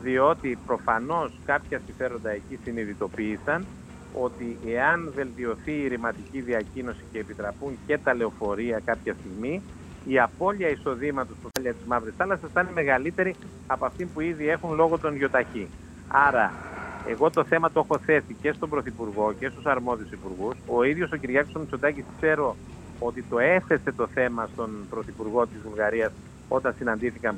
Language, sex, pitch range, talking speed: Greek, male, 115-155 Hz, 150 wpm